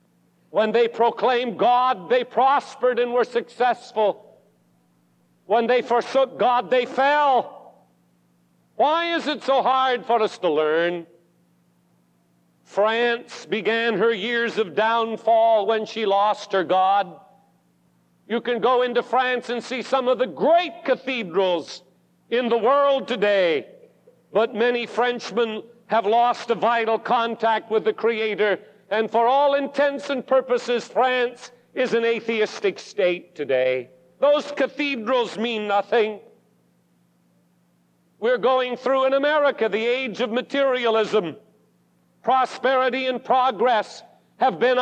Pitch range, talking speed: 190-255 Hz, 125 wpm